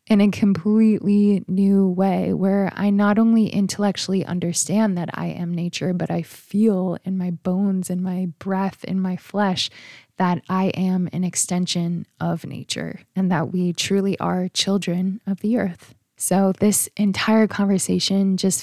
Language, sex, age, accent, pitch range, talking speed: English, female, 20-39, American, 180-205 Hz, 155 wpm